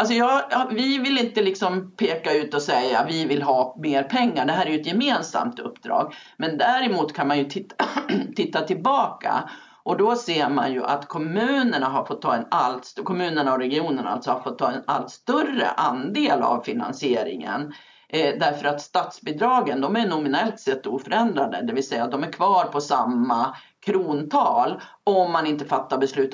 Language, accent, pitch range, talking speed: Swedish, native, 140-225 Hz, 180 wpm